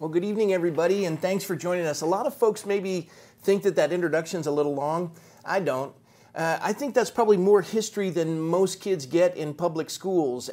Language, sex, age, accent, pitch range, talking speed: English, male, 40-59, American, 160-205 Hz, 210 wpm